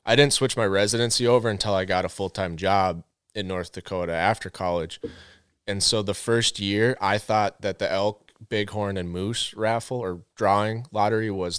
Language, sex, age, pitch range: English, male, 20-39, 95-115 Hz